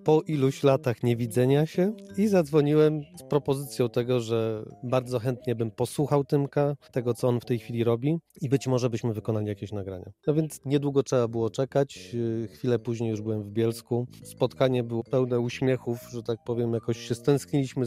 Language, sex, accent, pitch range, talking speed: Polish, male, native, 120-155 Hz, 175 wpm